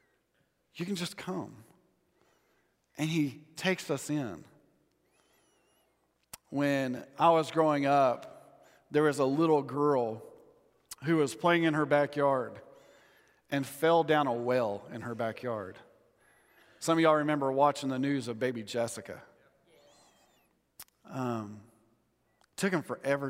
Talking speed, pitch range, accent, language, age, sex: 120 wpm, 135-170 Hz, American, English, 40-59, male